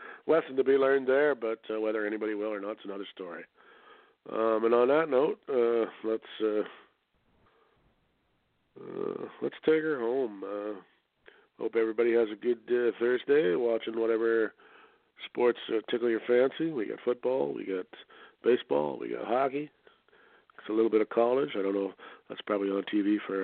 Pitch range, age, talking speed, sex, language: 105-120 Hz, 40-59, 170 wpm, male, English